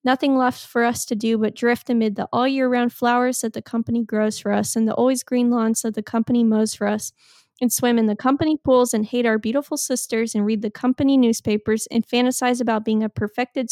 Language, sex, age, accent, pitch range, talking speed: English, female, 10-29, American, 225-250 Hz, 230 wpm